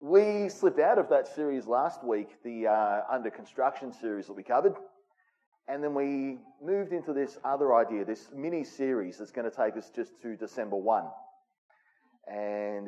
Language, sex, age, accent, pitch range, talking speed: English, male, 30-49, Australian, 105-145 Hz, 165 wpm